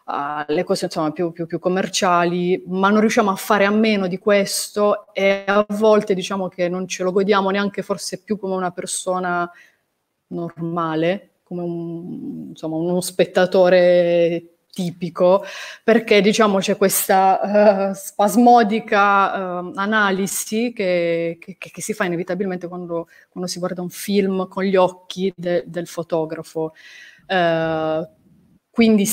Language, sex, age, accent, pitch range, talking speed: Italian, female, 30-49, native, 175-200 Hz, 140 wpm